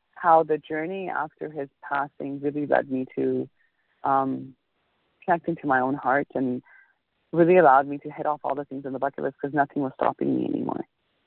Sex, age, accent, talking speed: female, 30-49, American, 190 wpm